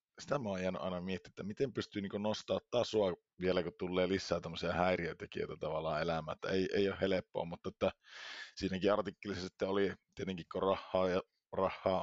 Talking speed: 160 wpm